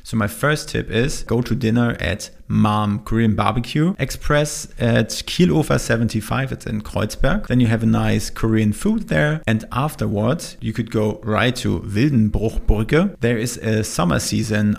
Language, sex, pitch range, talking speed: German, male, 110-125 Hz, 165 wpm